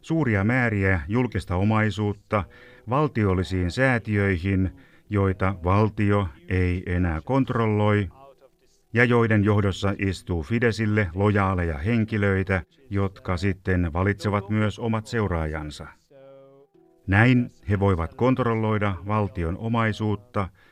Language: Finnish